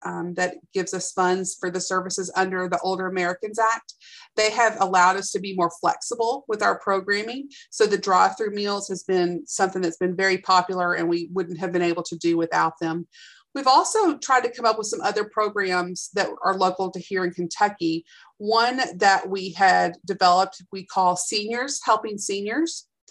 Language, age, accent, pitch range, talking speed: English, 40-59, American, 185-225 Hz, 190 wpm